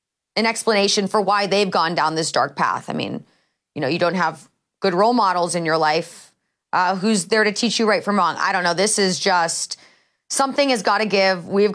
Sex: female